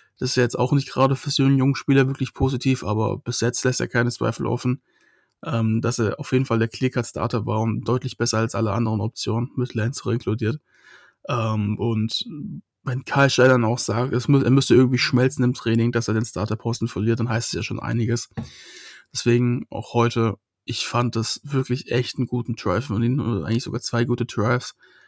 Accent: German